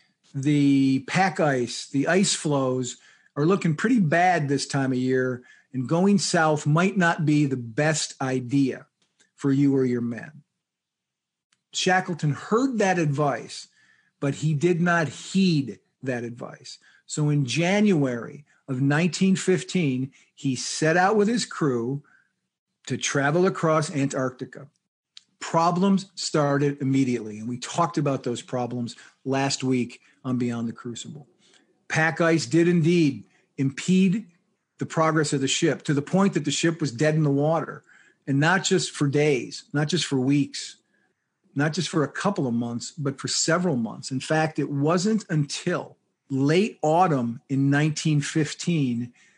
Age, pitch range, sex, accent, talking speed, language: 50-69, 135-175 Hz, male, American, 145 wpm, English